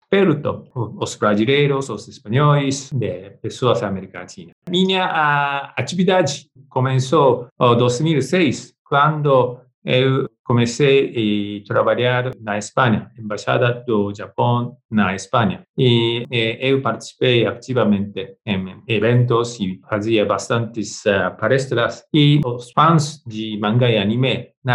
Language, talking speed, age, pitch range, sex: Portuguese, 110 wpm, 50-69, 110-145 Hz, male